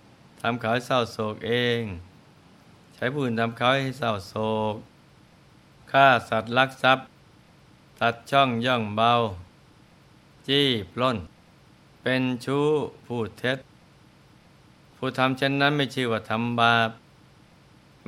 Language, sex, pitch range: Thai, male, 110-130 Hz